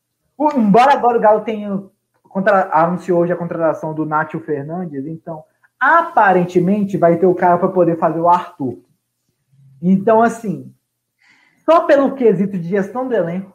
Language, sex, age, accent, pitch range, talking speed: Portuguese, male, 20-39, Brazilian, 170-205 Hz, 150 wpm